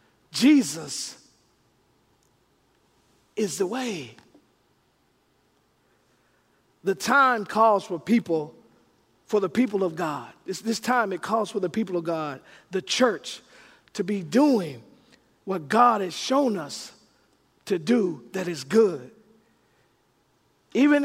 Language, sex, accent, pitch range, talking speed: English, male, American, 195-265 Hz, 110 wpm